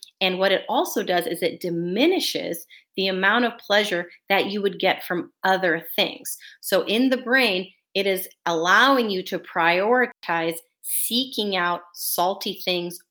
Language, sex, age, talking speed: English, female, 30-49, 150 wpm